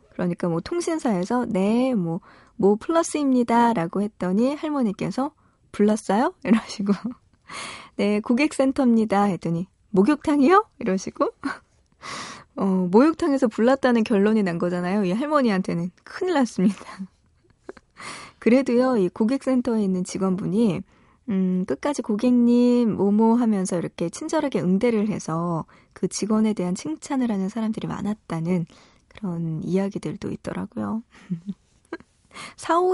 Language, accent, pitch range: Korean, native, 185-245 Hz